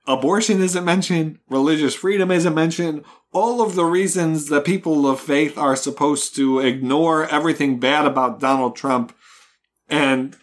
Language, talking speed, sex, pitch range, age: English, 145 wpm, male, 130-170 Hz, 40-59